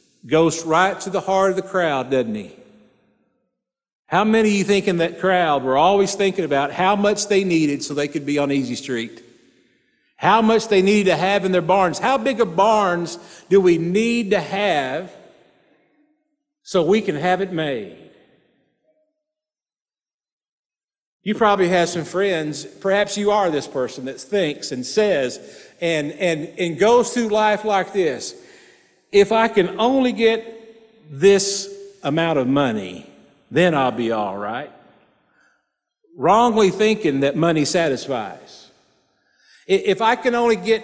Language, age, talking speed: English, 50-69, 150 wpm